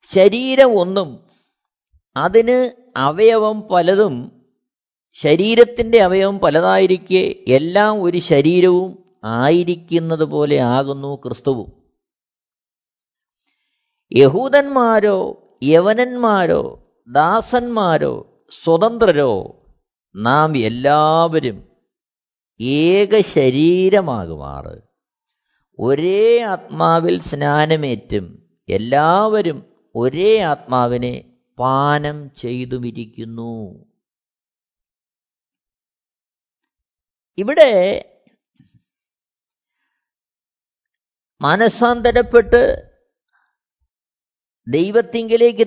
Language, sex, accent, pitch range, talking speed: Malayalam, male, native, 145-235 Hz, 45 wpm